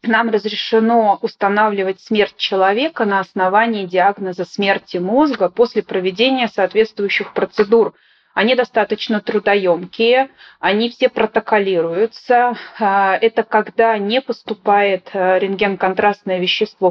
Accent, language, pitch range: native, Russian, 185-225 Hz